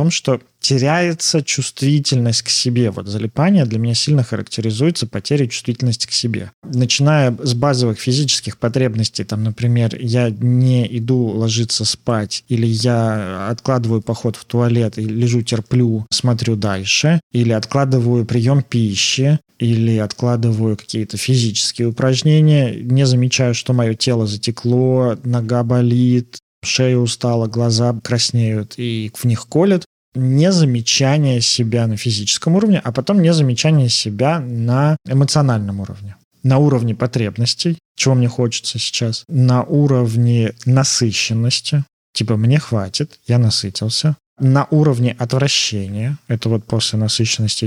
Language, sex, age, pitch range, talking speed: Russian, male, 20-39, 115-135 Hz, 125 wpm